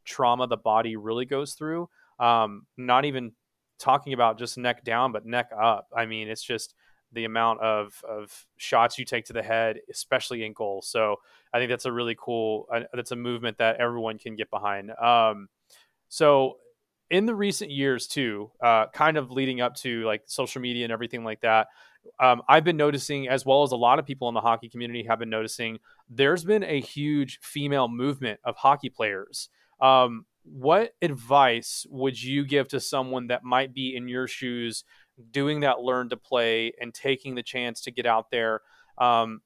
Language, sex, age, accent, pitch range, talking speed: English, male, 20-39, American, 115-140 Hz, 190 wpm